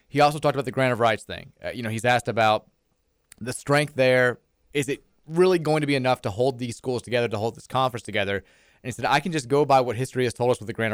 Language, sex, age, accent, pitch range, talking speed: English, male, 20-39, American, 115-135 Hz, 280 wpm